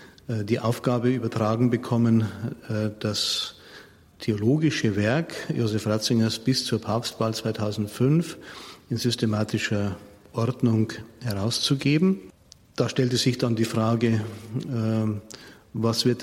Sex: male